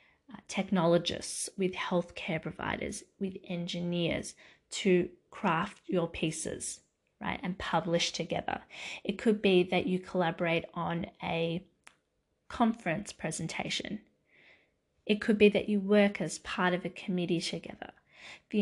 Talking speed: 120 wpm